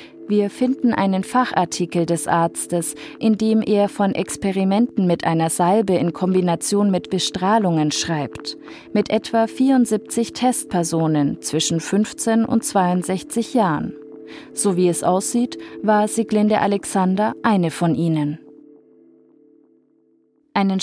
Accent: German